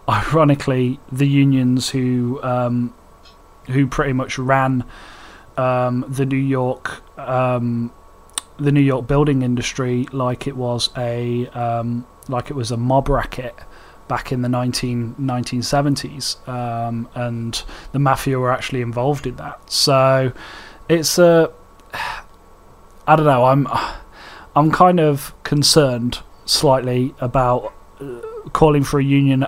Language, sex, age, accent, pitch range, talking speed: English, male, 20-39, British, 120-140 Hz, 120 wpm